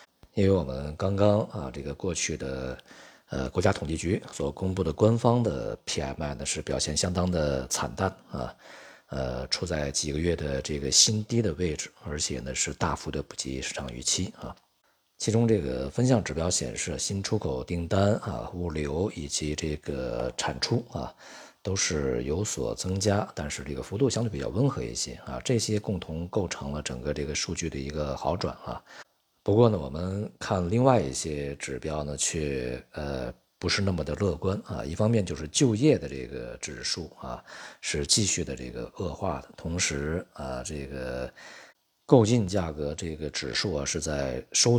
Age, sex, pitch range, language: 50-69, male, 70-105 Hz, Chinese